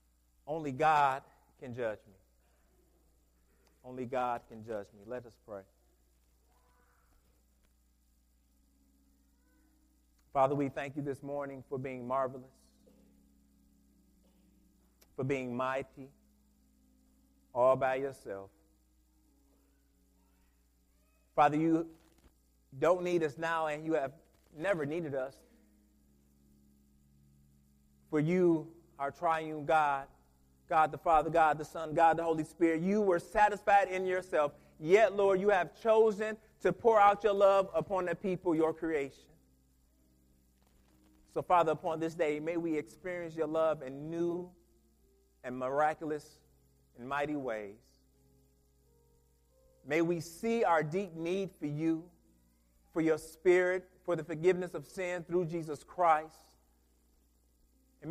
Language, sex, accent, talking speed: English, male, American, 115 wpm